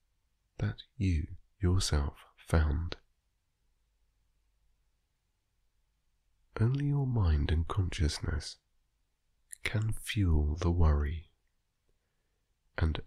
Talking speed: 65 wpm